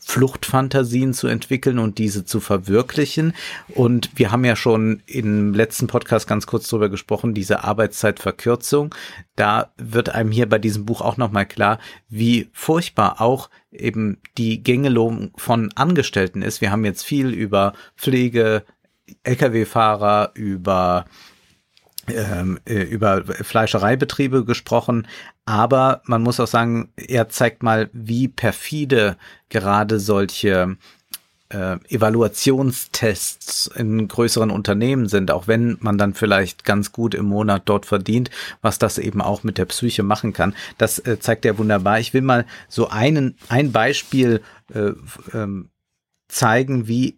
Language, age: German, 50-69